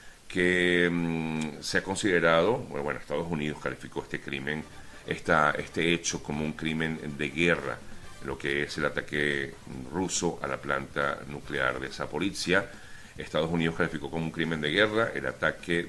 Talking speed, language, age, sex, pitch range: 160 wpm, Spanish, 40-59, male, 75-90 Hz